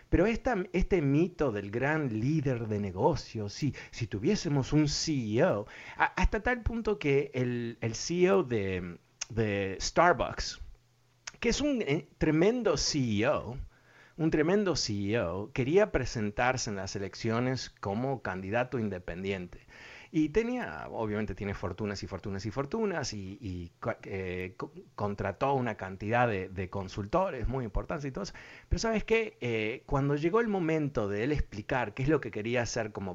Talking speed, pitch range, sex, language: 150 wpm, 100-145 Hz, male, Spanish